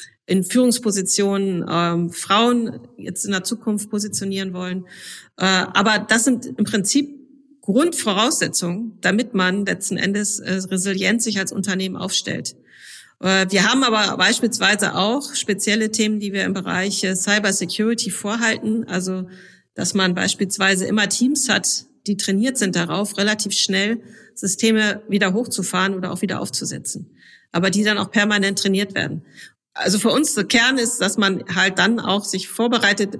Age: 40-59